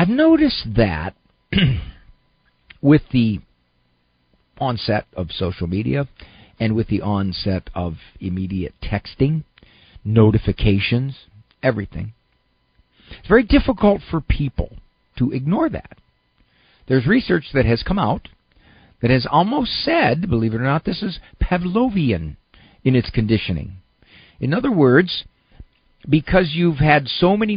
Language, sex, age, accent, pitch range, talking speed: English, male, 50-69, American, 95-150 Hz, 120 wpm